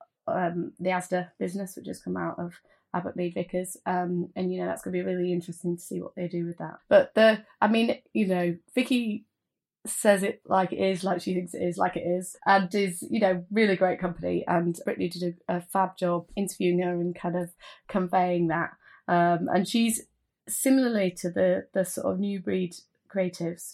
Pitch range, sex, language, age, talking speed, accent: 175-195 Hz, female, English, 20-39, 205 wpm, British